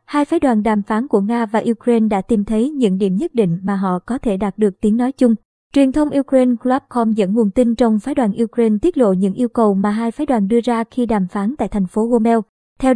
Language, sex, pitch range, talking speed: Vietnamese, male, 215-255 Hz, 255 wpm